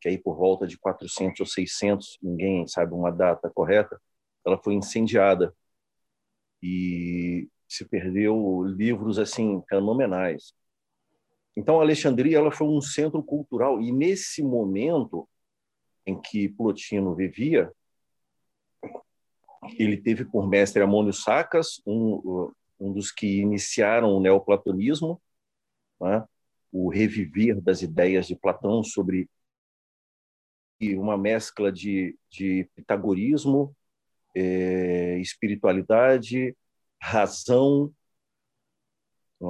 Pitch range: 95-120 Hz